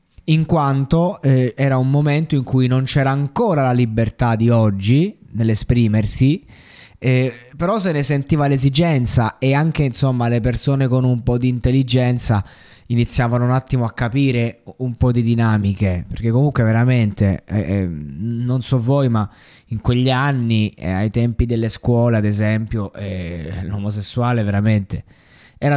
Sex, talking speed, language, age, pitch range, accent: male, 145 wpm, Italian, 20-39, 105-135 Hz, native